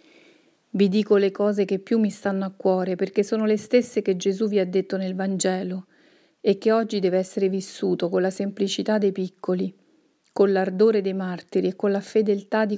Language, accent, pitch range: Italian, native, 190-220 Hz